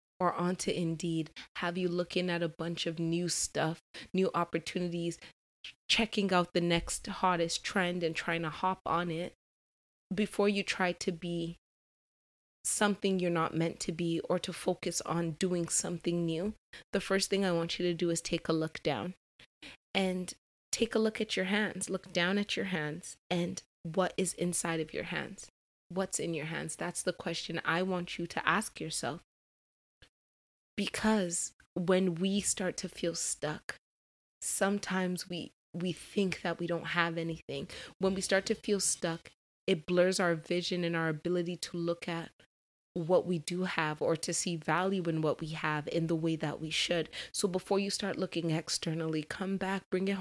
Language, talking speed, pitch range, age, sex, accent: English, 180 wpm, 165-190 Hz, 20-39, female, American